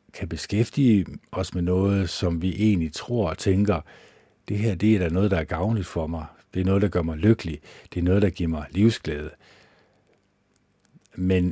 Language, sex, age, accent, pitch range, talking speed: Danish, male, 50-69, native, 80-100 Hz, 195 wpm